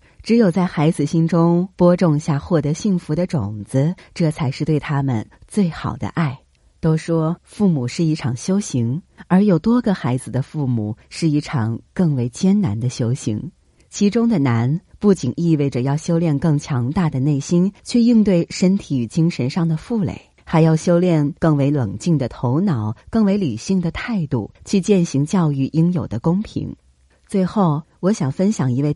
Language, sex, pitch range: Chinese, female, 130-180 Hz